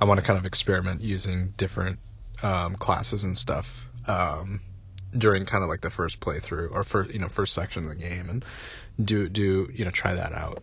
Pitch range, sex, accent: 90-110 Hz, male, American